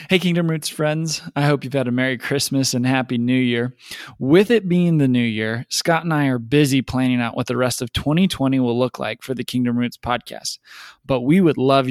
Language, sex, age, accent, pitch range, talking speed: English, male, 20-39, American, 130-170 Hz, 225 wpm